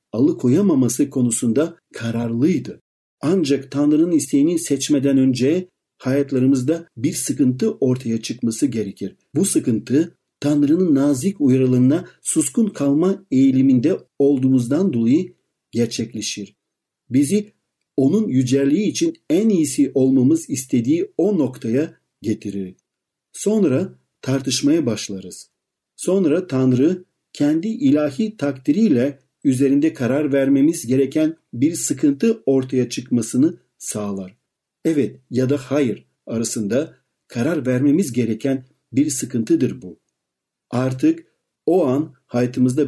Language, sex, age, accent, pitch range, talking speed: Turkish, male, 50-69, native, 130-170 Hz, 95 wpm